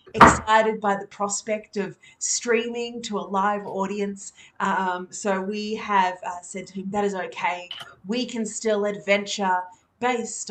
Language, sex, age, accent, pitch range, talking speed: English, female, 30-49, Australian, 180-215 Hz, 150 wpm